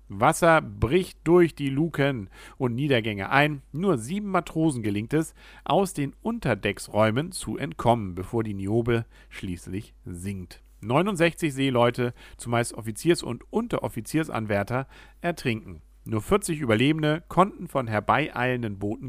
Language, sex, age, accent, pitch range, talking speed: German, male, 50-69, German, 110-155 Hz, 115 wpm